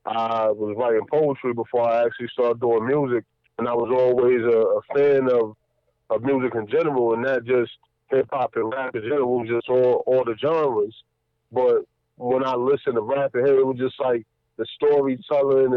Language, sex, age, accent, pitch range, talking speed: English, male, 20-39, American, 125-150 Hz, 190 wpm